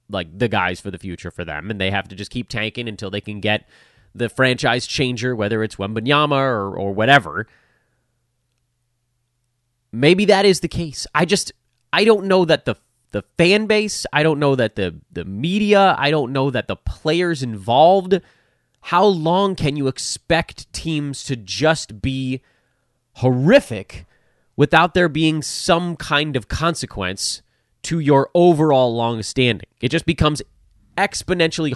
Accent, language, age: American, English, 30-49